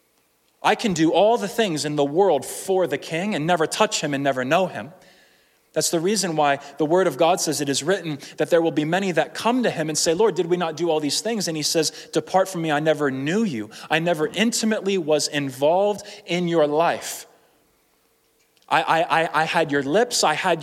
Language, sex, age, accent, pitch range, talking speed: English, male, 20-39, American, 140-185 Hz, 225 wpm